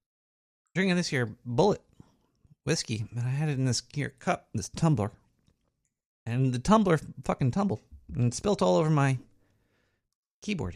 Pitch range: 125-195 Hz